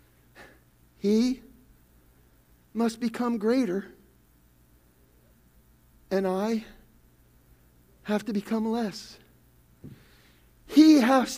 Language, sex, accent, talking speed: English, male, American, 65 wpm